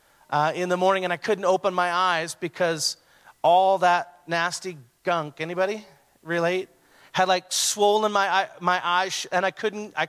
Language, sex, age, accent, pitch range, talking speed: English, male, 30-49, American, 150-205 Hz, 170 wpm